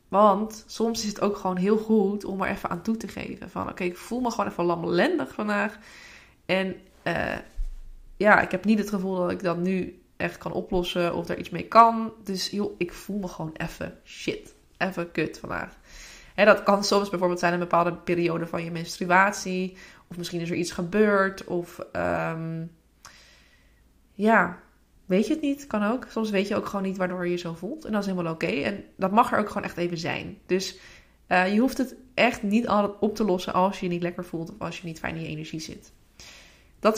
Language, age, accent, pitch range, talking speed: Dutch, 20-39, Dutch, 175-210 Hz, 220 wpm